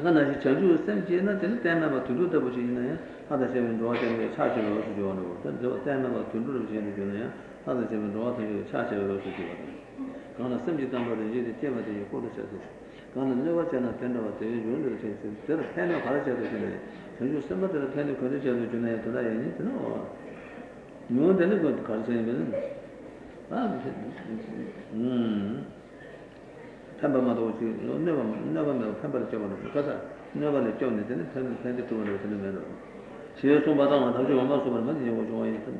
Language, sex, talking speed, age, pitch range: Italian, male, 125 wpm, 60-79, 110-135 Hz